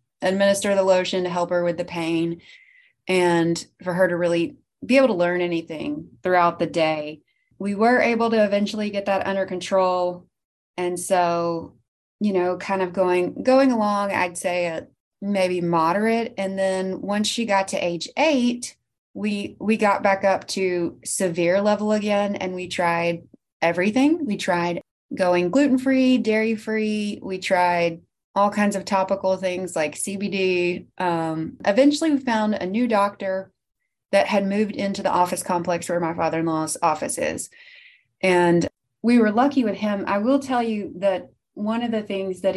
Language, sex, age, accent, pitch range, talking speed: English, female, 30-49, American, 175-210 Hz, 160 wpm